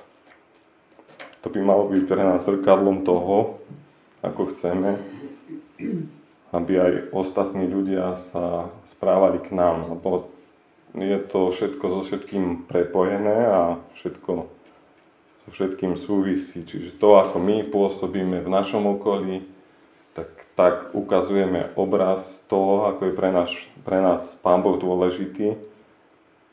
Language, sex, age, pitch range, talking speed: Slovak, male, 30-49, 90-100 Hz, 115 wpm